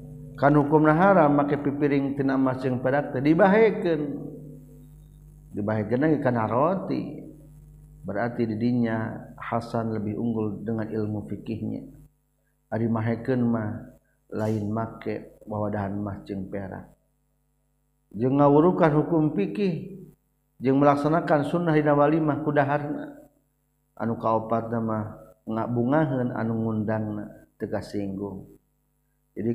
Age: 50-69